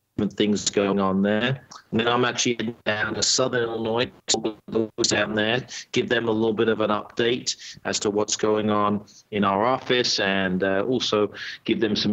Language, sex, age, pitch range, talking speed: English, male, 40-59, 105-125 Hz, 180 wpm